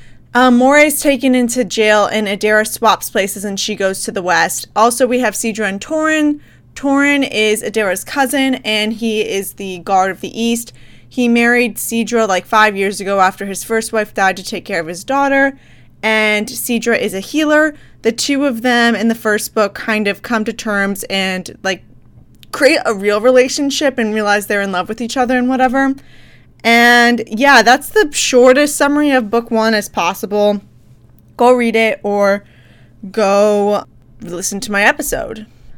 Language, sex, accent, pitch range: English, female, American, 200-245 Hz